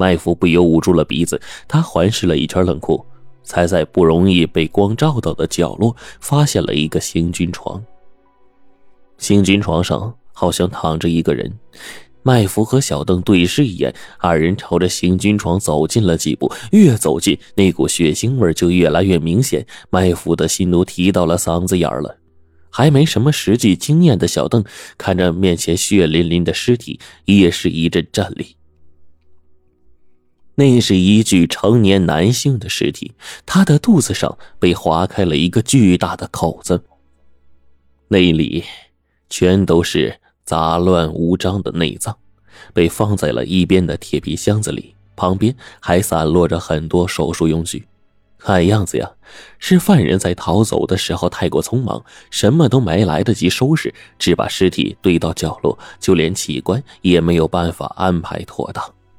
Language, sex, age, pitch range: Chinese, male, 20-39, 80-105 Hz